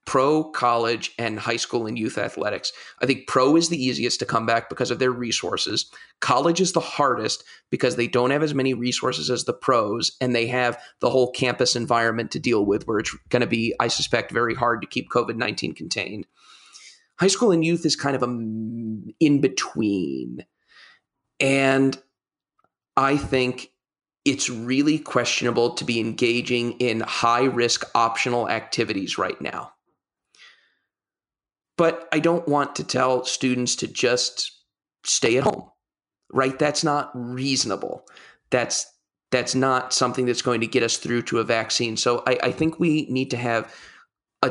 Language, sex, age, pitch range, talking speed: English, male, 30-49, 120-135 Hz, 165 wpm